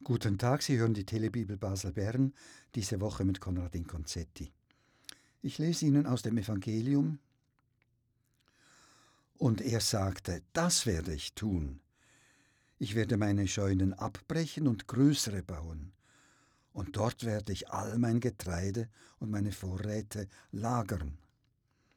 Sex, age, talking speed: male, 60-79, 120 wpm